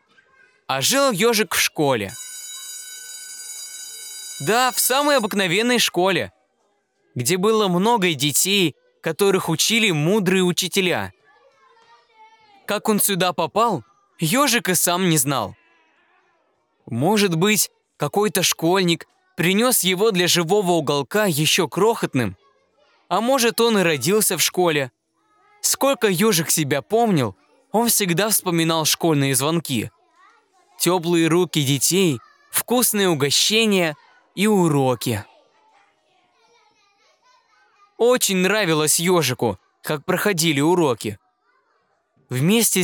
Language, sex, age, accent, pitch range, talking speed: Russian, male, 20-39, native, 165-230 Hz, 95 wpm